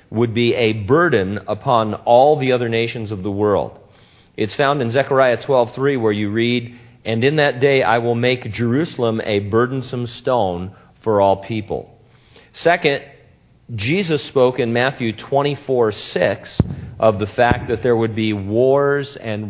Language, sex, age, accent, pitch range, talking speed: English, male, 40-59, American, 100-125 Hz, 160 wpm